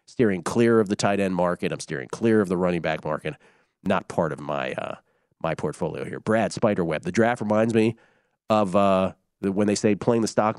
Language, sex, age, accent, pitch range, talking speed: English, male, 40-59, American, 105-145 Hz, 215 wpm